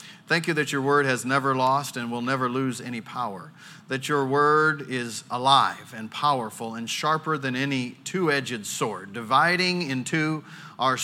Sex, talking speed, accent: male, 165 wpm, American